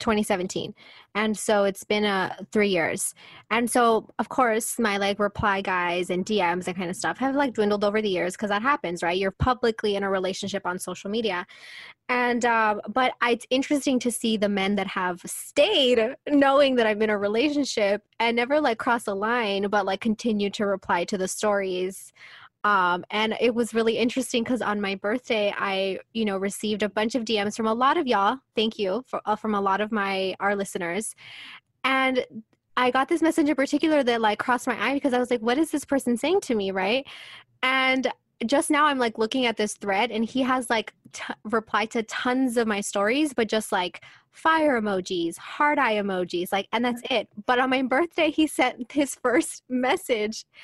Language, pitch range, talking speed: English, 200-255 Hz, 205 wpm